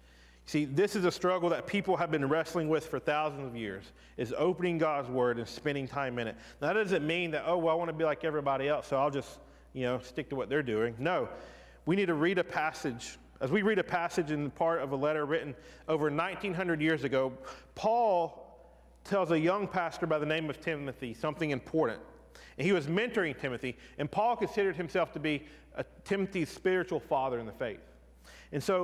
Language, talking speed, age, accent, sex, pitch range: English, 210 wpm, 40-59, American, male, 140-180 Hz